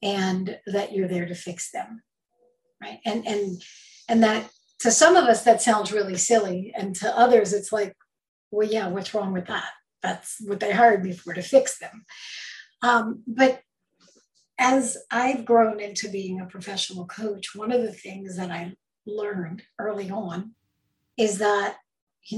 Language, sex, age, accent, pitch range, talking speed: English, female, 50-69, American, 195-240 Hz, 165 wpm